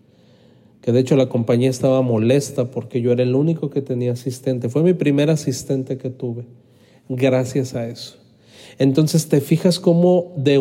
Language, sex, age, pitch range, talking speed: Spanish, male, 40-59, 130-160 Hz, 165 wpm